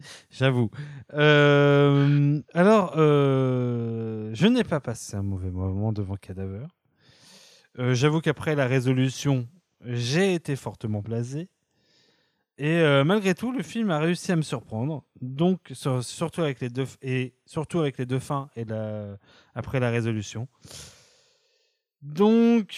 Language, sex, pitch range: French, male, 115-155 Hz